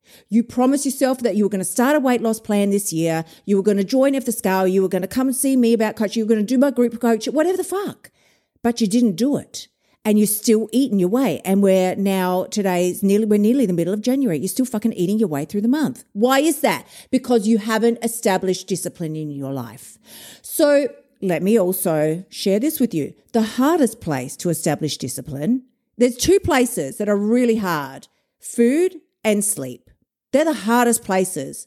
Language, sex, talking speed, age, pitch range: English, female, 215 wpm, 50-69, 195-255 Hz